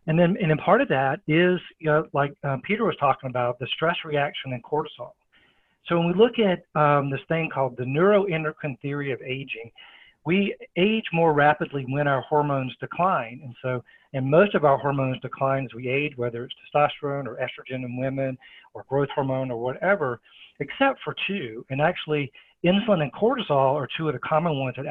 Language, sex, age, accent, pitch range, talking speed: English, male, 50-69, American, 130-165 Hz, 195 wpm